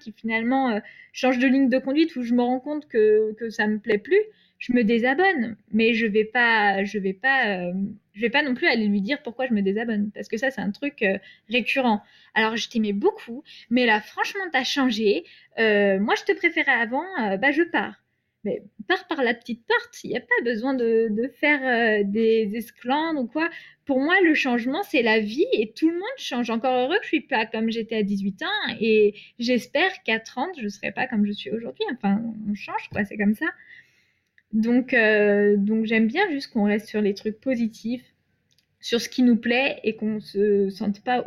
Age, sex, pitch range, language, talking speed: 20-39, female, 215-265 Hz, French, 225 wpm